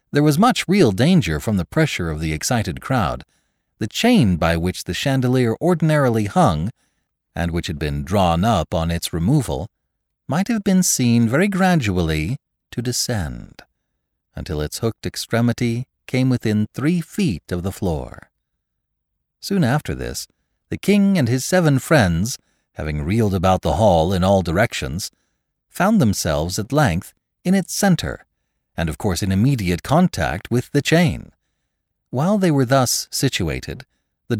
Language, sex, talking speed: English, male, 150 wpm